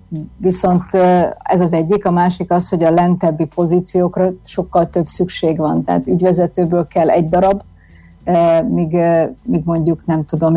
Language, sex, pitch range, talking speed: Hungarian, female, 160-180 Hz, 140 wpm